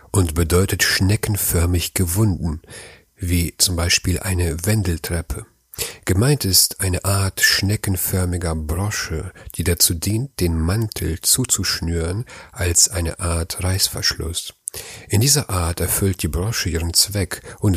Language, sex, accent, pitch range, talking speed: German, male, German, 85-100 Hz, 115 wpm